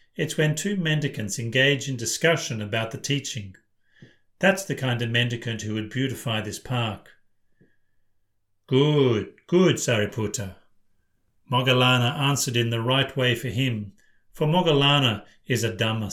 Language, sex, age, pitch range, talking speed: English, male, 40-59, 110-145 Hz, 135 wpm